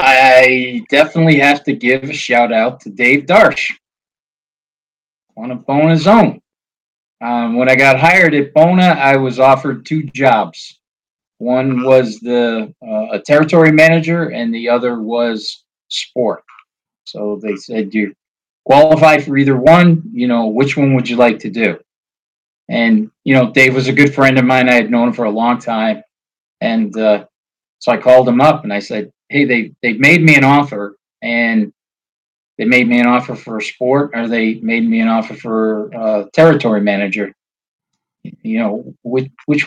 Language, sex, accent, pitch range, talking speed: English, male, American, 115-145 Hz, 170 wpm